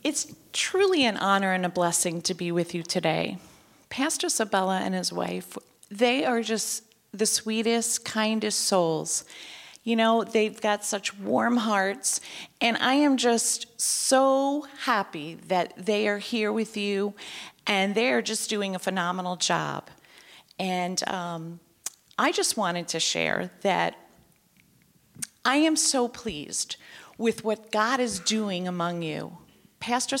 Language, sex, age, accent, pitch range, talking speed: English, female, 40-59, American, 195-245 Hz, 140 wpm